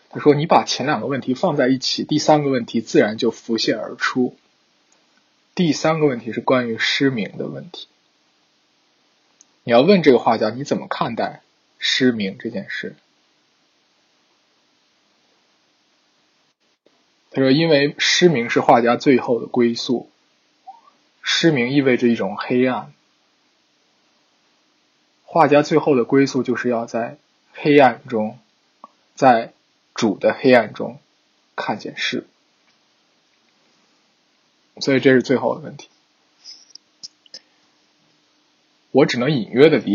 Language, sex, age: Chinese, male, 20-39